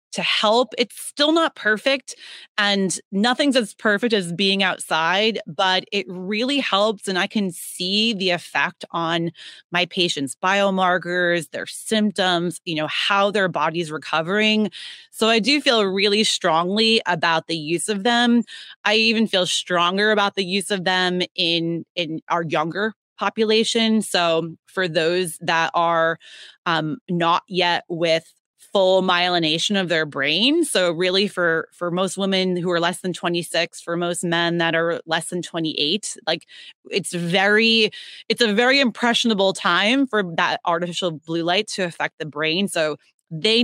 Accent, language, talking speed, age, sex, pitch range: American, English, 155 wpm, 30-49, female, 170-210 Hz